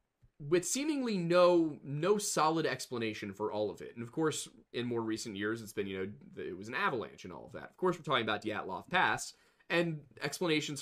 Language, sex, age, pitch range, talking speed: English, male, 20-39, 115-155 Hz, 210 wpm